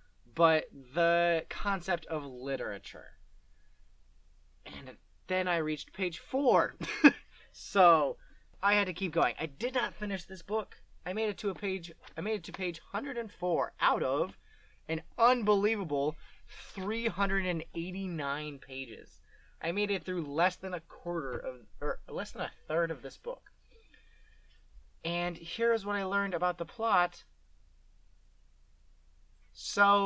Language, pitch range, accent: English, 140-195 Hz, American